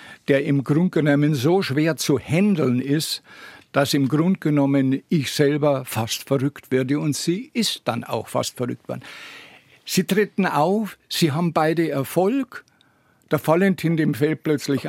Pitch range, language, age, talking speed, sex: 135-160 Hz, German, 60-79, 155 wpm, male